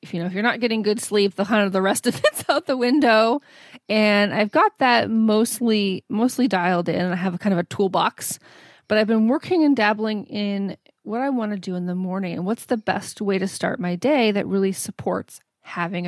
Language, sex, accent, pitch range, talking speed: English, female, American, 200-270 Hz, 230 wpm